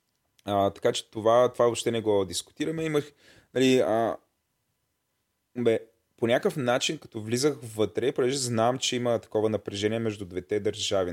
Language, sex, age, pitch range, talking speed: Bulgarian, male, 20-39, 100-125 Hz, 150 wpm